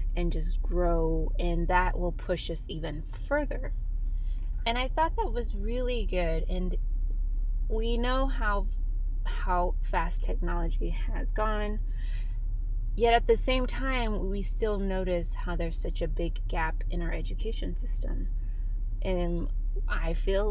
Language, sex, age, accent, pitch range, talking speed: English, female, 20-39, American, 160-215 Hz, 140 wpm